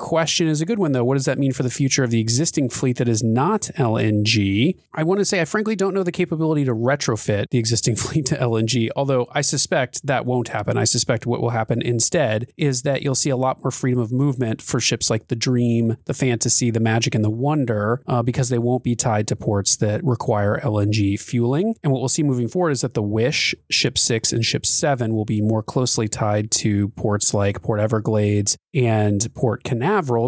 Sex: male